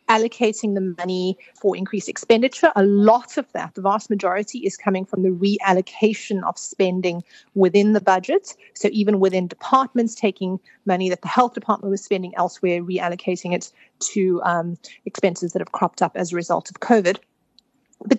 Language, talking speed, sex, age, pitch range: English, 170 wpm, female, 40-59, 185-225 Hz